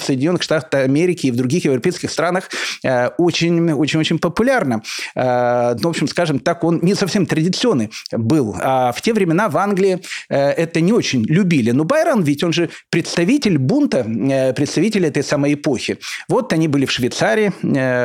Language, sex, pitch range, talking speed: Russian, male, 145-200 Hz, 155 wpm